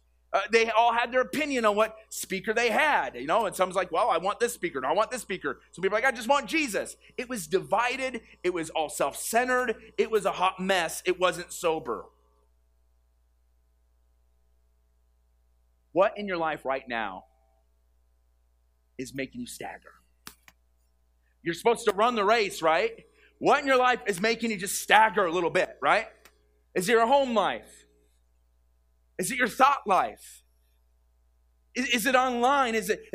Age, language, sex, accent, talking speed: 30-49, English, male, American, 170 wpm